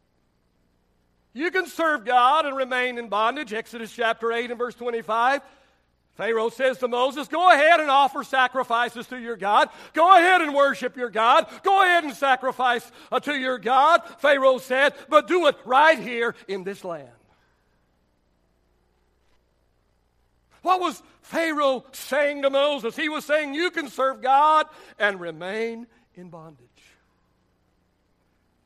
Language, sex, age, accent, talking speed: English, male, 60-79, American, 140 wpm